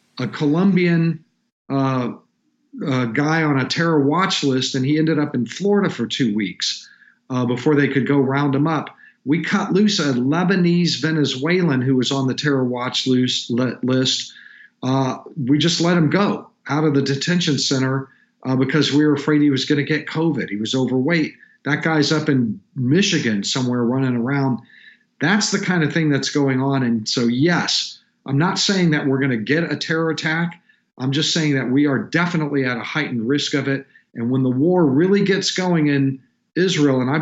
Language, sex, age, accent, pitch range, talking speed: English, male, 50-69, American, 130-160 Hz, 190 wpm